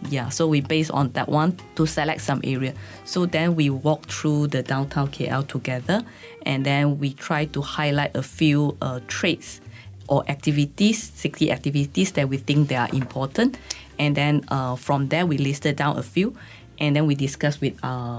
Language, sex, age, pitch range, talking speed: English, female, 20-39, 130-150 Hz, 185 wpm